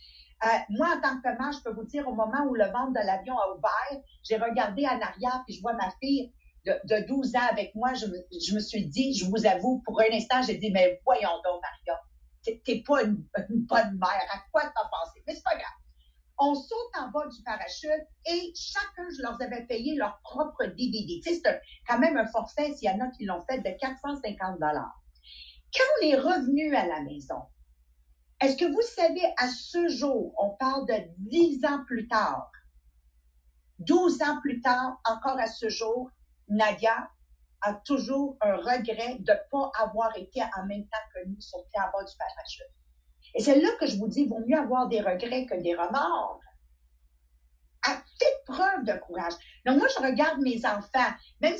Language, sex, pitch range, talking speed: English, female, 195-280 Hz, 205 wpm